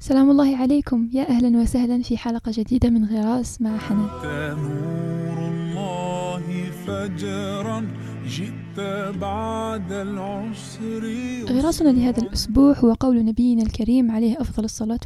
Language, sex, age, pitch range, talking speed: Arabic, female, 10-29, 220-255 Hz, 110 wpm